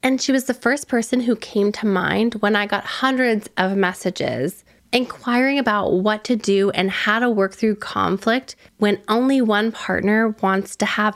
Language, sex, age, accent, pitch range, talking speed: English, female, 20-39, American, 185-220 Hz, 185 wpm